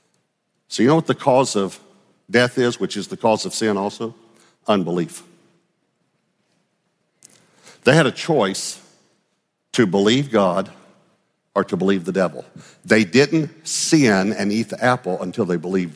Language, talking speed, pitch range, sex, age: English, 145 wpm, 125-170 Hz, male, 50-69